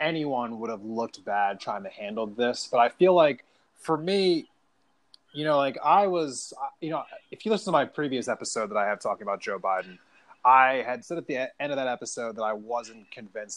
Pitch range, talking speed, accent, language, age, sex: 115-155 Hz, 215 wpm, American, English, 20-39, male